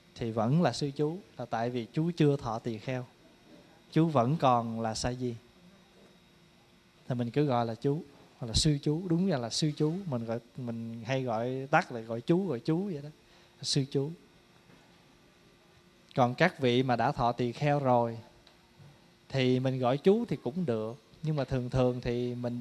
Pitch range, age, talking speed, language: 120-165 Hz, 20-39, 190 wpm, Vietnamese